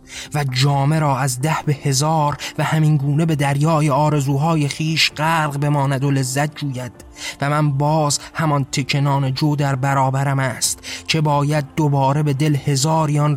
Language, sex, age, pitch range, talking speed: Persian, male, 20-39, 135-150 Hz, 155 wpm